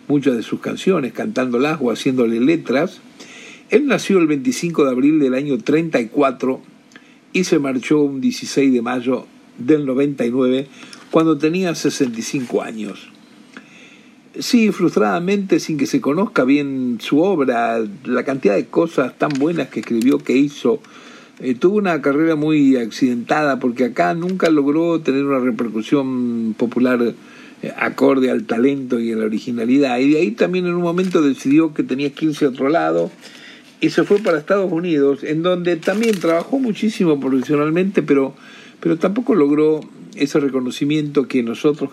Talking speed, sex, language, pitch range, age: 150 wpm, male, Spanish, 130-195 Hz, 50-69